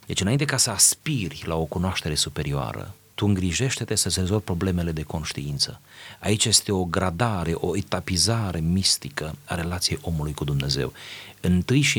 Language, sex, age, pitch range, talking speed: Romanian, male, 30-49, 85-105 Hz, 150 wpm